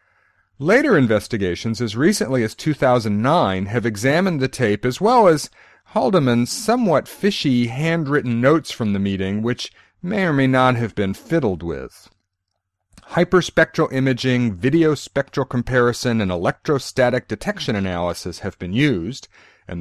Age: 40-59